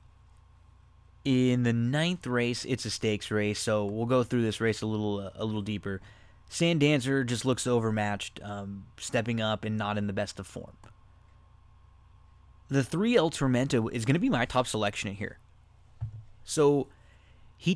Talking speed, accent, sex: 170 wpm, American, male